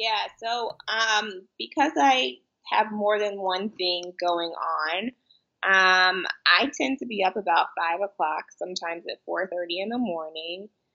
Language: English